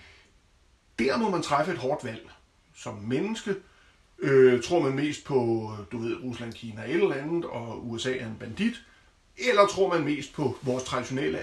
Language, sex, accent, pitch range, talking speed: Danish, male, native, 115-150 Hz, 165 wpm